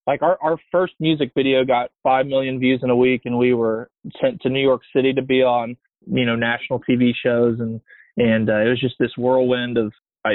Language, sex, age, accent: English, male, 20-39, American